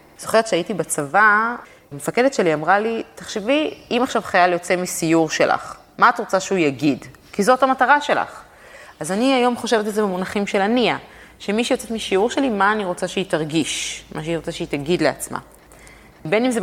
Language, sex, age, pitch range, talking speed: Hebrew, female, 20-39, 165-220 Hz, 185 wpm